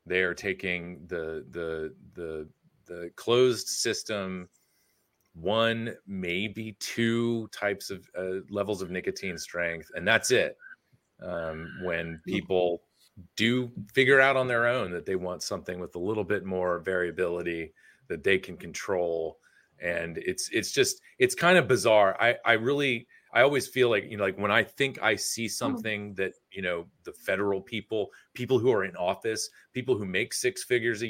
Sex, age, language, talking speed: male, 30-49, English, 165 wpm